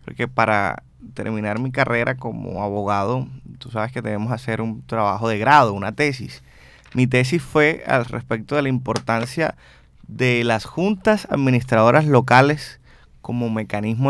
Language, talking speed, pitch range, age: Spanish, 140 wpm, 110-140 Hz, 20-39